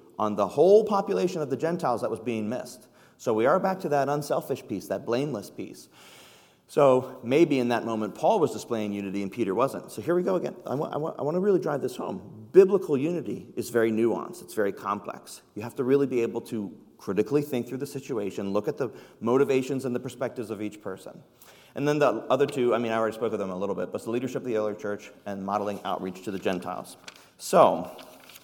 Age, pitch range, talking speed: 40-59, 105-145 Hz, 230 wpm